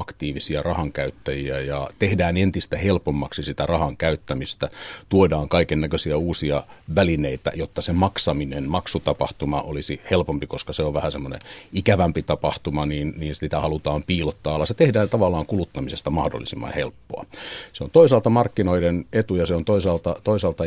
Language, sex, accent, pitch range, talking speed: Finnish, male, native, 75-100 Hz, 140 wpm